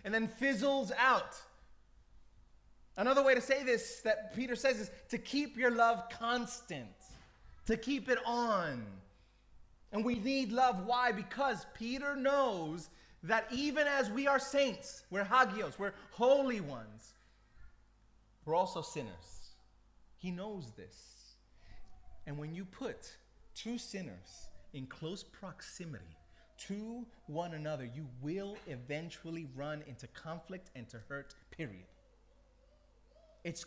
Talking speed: 125 wpm